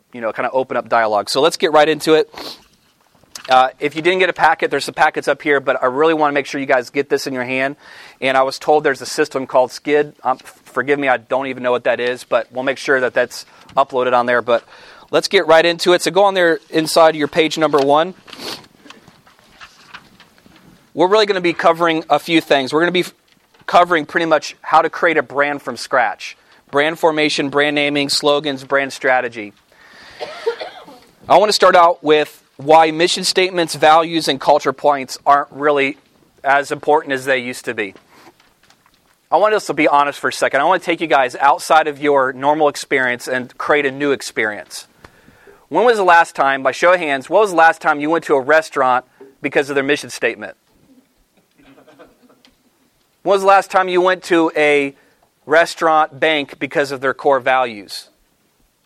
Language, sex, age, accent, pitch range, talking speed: English, male, 30-49, American, 135-165 Hz, 200 wpm